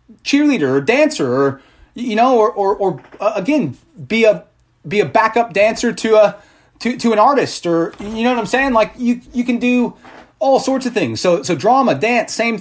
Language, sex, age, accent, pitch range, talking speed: English, male, 30-49, American, 185-240 Hz, 205 wpm